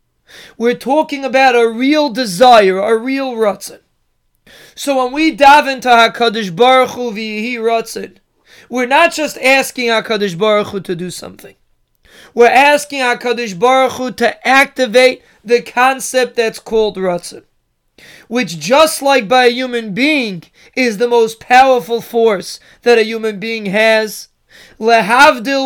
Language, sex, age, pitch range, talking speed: English, male, 20-39, 225-270 Hz, 140 wpm